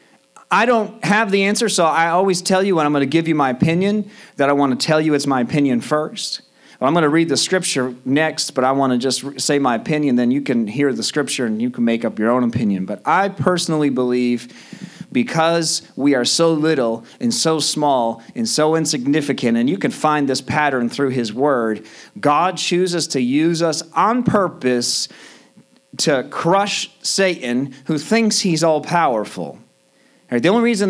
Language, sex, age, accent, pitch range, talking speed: English, male, 40-59, American, 125-180 Hz, 190 wpm